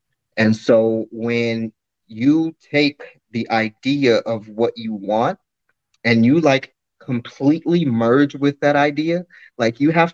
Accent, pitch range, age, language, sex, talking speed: American, 110-140 Hz, 30-49, English, male, 130 wpm